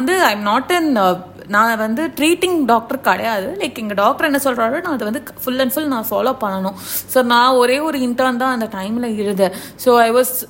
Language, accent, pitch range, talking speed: Tamil, native, 225-270 Hz, 175 wpm